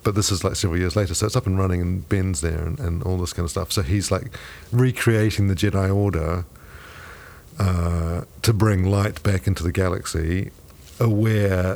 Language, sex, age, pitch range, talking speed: English, male, 50-69, 85-105 Hz, 195 wpm